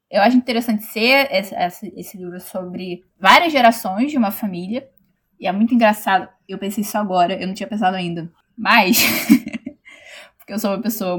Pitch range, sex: 195-255 Hz, female